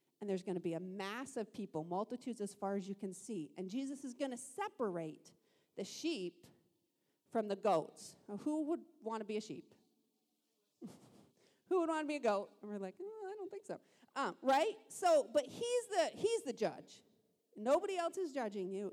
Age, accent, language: 40-59, American, English